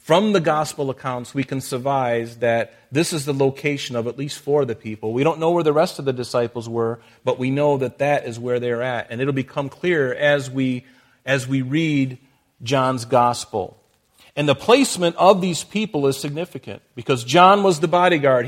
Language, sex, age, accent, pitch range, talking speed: English, male, 40-59, American, 130-165 Hz, 200 wpm